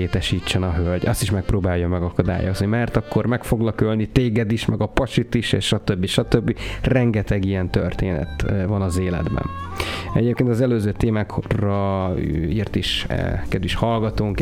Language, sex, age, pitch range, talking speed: Hungarian, male, 30-49, 95-115 Hz, 135 wpm